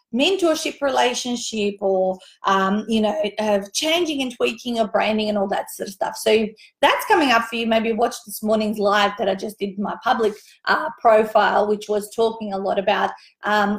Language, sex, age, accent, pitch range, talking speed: English, female, 30-49, Australian, 210-245 Hz, 190 wpm